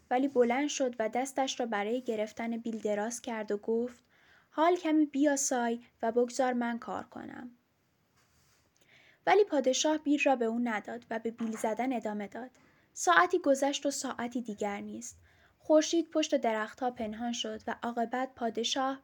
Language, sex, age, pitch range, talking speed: Persian, female, 10-29, 225-275 Hz, 155 wpm